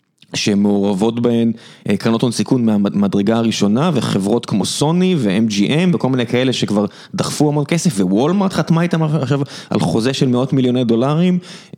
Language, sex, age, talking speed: Hebrew, male, 20-39, 140 wpm